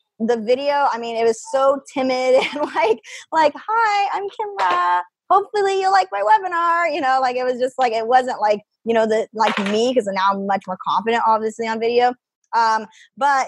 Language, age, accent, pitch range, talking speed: English, 10-29, American, 200-255 Hz, 200 wpm